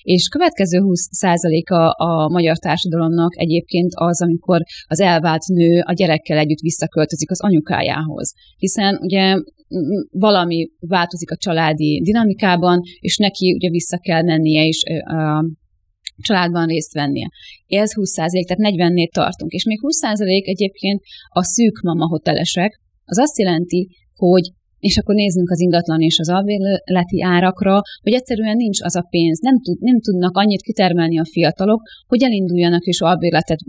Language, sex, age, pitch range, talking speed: Hungarian, female, 30-49, 160-195 Hz, 145 wpm